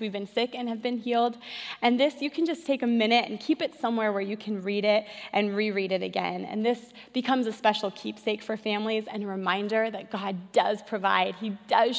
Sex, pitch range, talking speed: female, 210-265 Hz, 225 wpm